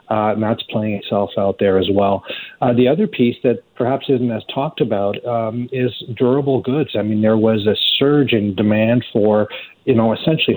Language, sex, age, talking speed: English, male, 40-59, 200 wpm